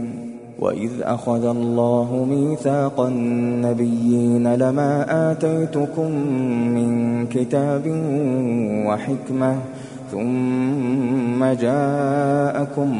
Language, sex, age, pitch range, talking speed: Arabic, male, 20-39, 130-160 Hz, 55 wpm